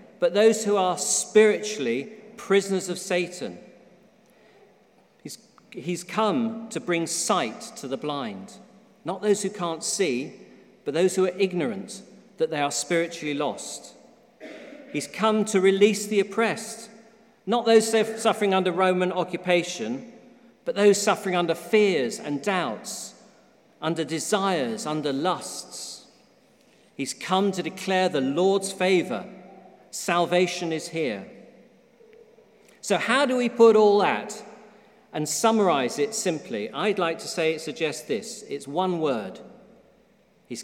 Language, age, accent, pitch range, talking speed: English, 40-59, British, 175-225 Hz, 130 wpm